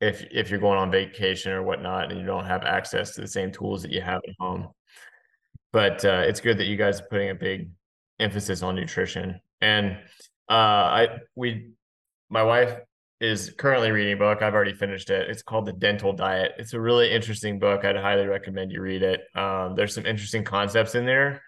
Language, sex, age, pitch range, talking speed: English, male, 20-39, 95-115 Hz, 205 wpm